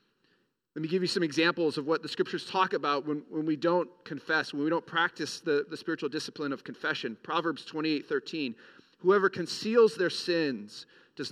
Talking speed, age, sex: 185 wpm, 40-59, male